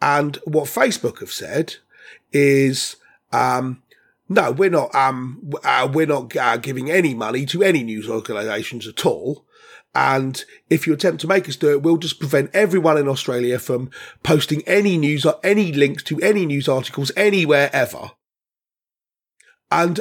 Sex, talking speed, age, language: male, 160 wpm, 30-49, English